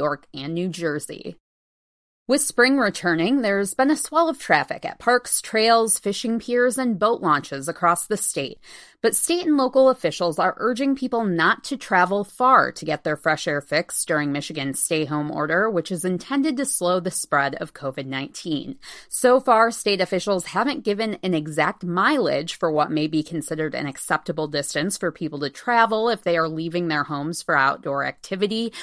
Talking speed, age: 175 wpm, 20-39